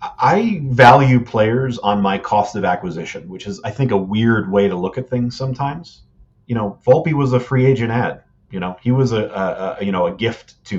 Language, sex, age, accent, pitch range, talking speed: English, male, 30-49, American, 100-125 Hz, 220 wpm